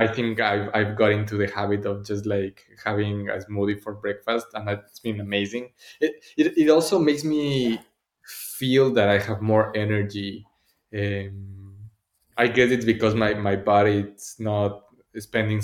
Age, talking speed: 20-39, 165 wpm